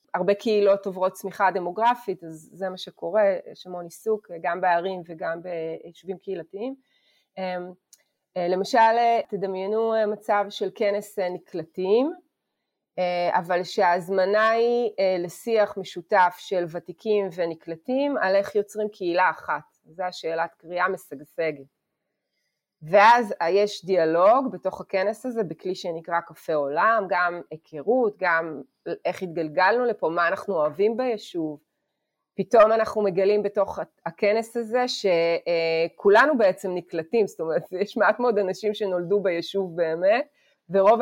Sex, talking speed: female, 115 wpm